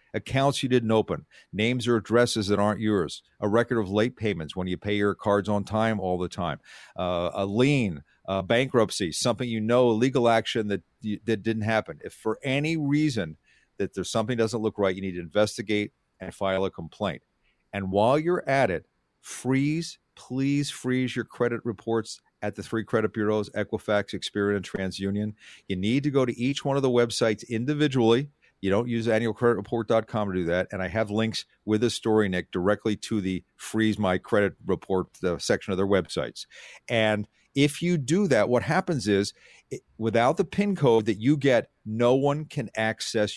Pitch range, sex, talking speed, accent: 100-120 Hz, male, 190 wpm, American